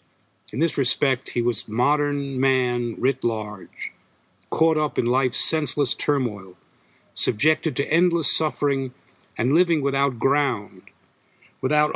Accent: American